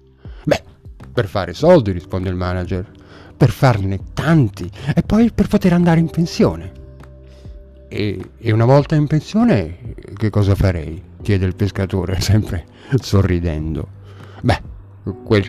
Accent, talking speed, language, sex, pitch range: native, 130 wpm, Italian, male, 95-120 Hz